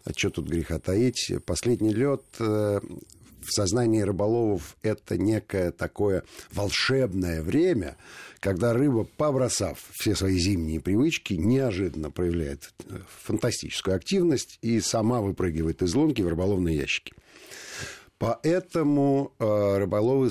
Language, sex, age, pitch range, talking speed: Russian, male, 50-69, 85-115 Hz, 110 wpm